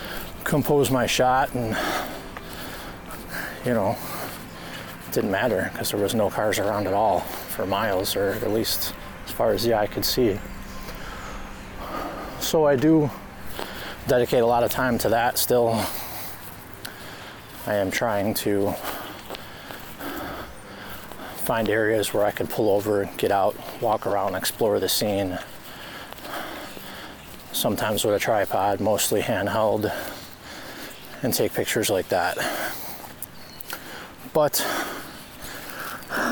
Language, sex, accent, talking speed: English, male, American, 115 wpm